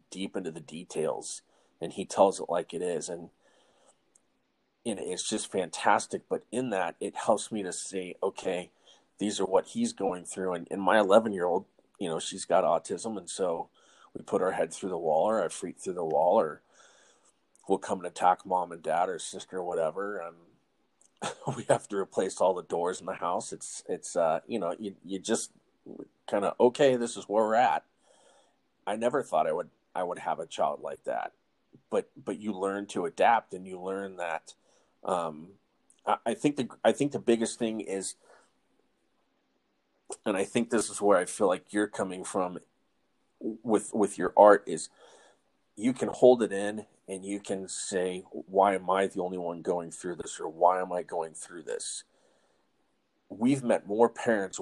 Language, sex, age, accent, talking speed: English, male, 30-49, American, 190 wpm